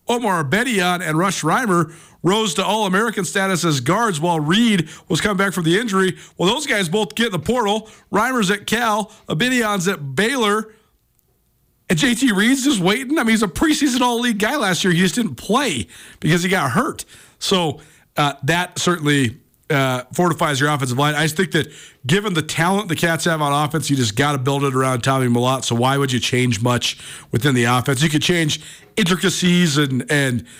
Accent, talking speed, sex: American, 195 wpm, male